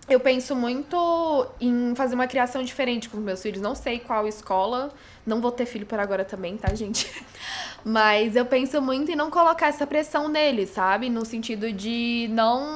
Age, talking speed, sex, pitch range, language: 10-29, 185 wpm, female, 215-260 Hz, Portuguese